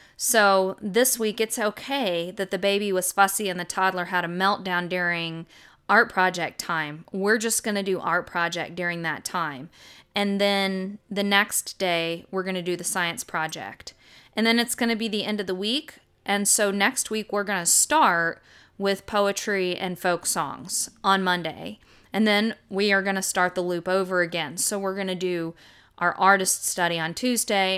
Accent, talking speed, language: American, 190 wpm, English